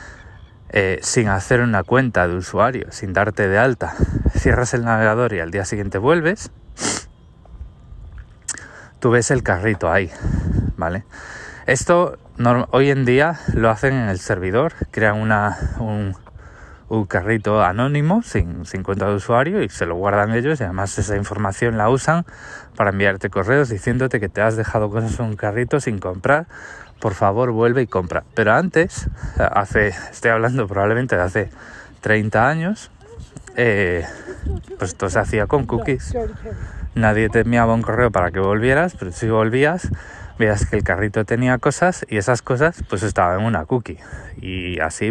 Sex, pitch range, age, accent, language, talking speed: male, 100-125 Hz, 20-39, Spanish, Spanish, 155 wpm